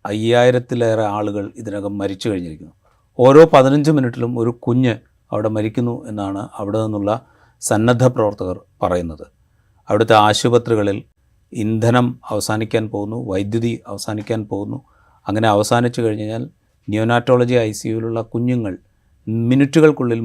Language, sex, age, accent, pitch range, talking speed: Malayalam, male, 30-49, native, 100-125 Hz, 100 wpm